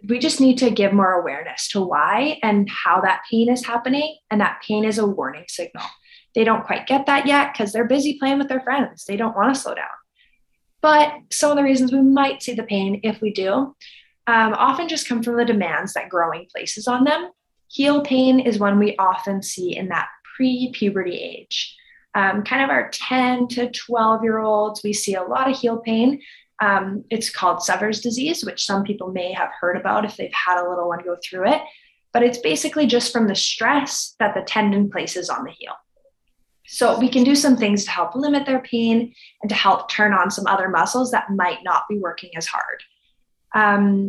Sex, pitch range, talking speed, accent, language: female, 195-260 Hz, 210 wpm, American, English